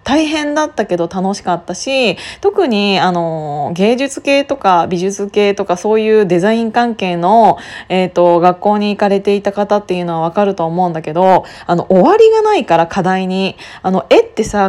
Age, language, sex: 20-39, Japanese, female